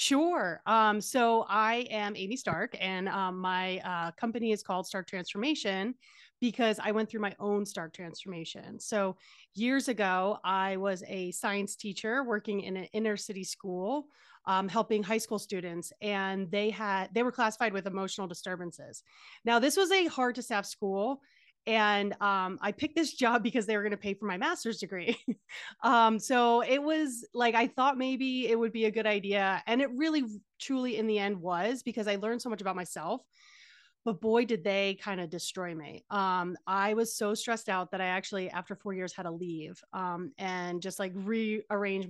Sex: female